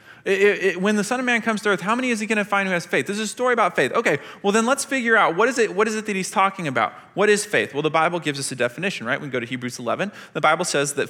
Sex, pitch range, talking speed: male, 150-210 Hz, 345 wpm